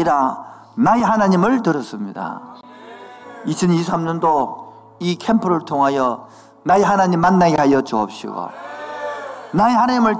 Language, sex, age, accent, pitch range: Korean, male, 50-69, native, 150-225 Hz